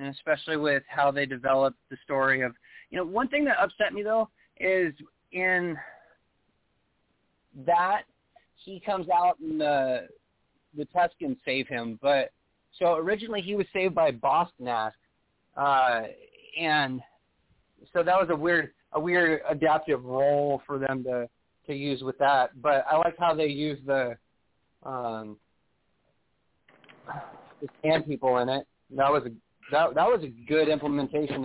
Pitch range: 130-160 Hz